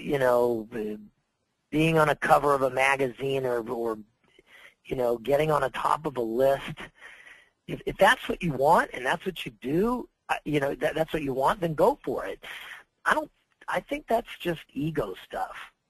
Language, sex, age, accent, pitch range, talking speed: English, male, 40-59, American, 135-185 Hz, 180 wpm